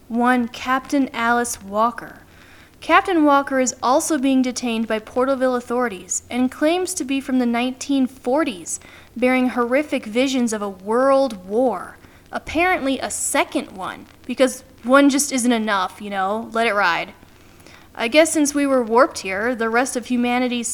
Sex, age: female, 10-29